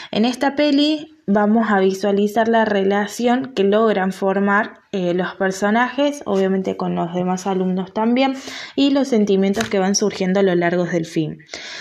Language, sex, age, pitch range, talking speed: Spanish, female, 20-39, 190-235 Hz, 160 wpm